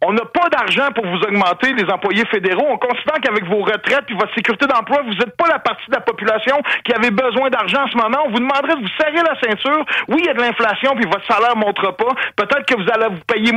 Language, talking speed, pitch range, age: French, 260 wpm, 195-260 Hz, 50-69